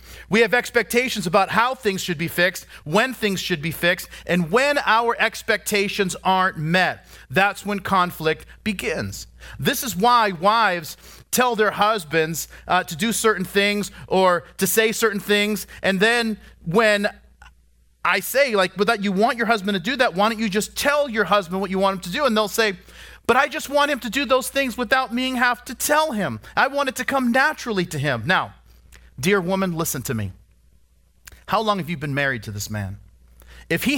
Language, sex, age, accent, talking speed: English, male, 40-59, American, 200 wpm